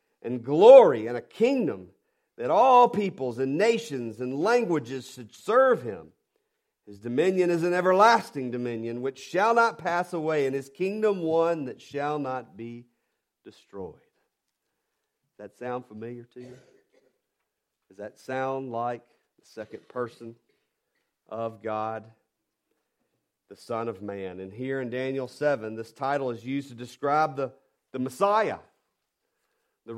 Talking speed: 140 wpm